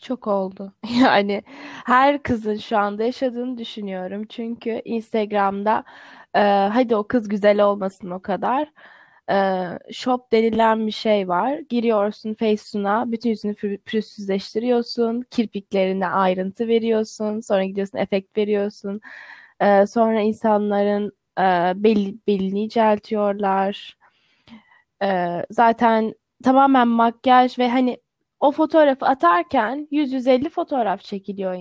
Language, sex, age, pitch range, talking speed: Turkish, female, 10-29, 200-245 Hz, 105 wpm